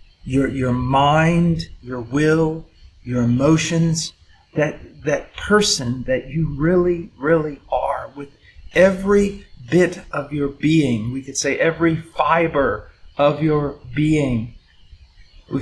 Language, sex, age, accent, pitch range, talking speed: English, male, 50-69, American, 110-160 Hz, 115 wpm